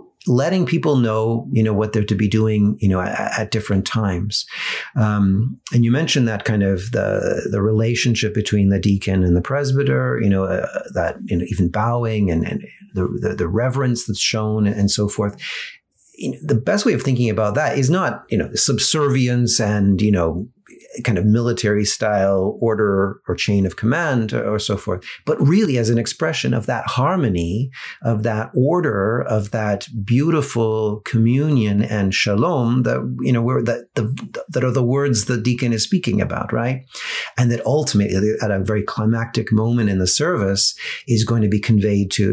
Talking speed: 175 wpm